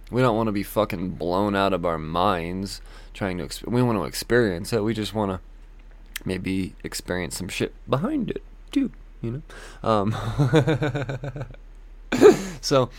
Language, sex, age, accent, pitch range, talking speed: English, male, 20-39, American, 105-150 Hz, 150 wpm